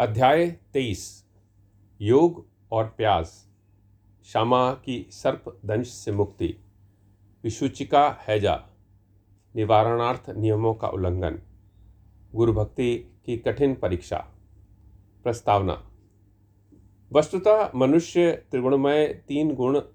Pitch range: 100-125 Hz